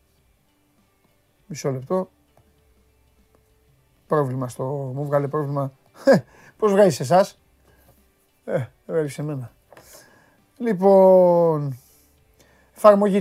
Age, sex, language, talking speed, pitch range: 30-49, male, Greek, 75 wpm, 135-175 Hz